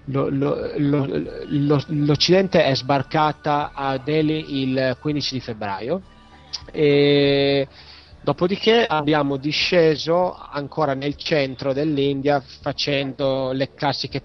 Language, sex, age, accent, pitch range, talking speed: Italian, male, 30-49, native, 120-140 Hz, 100 wpm